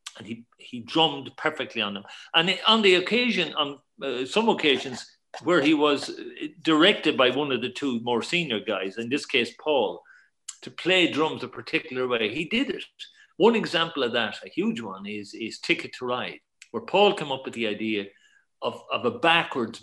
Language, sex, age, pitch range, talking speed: English, male, 50-69, 120-195 Hz, 190 wpm